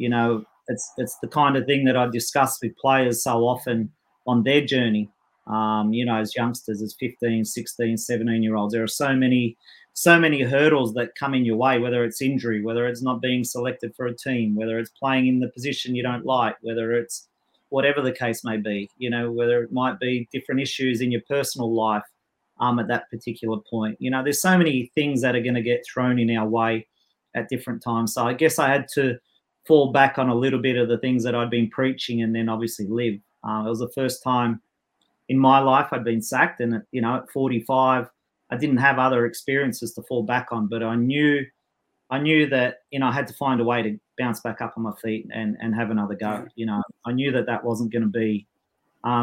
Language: English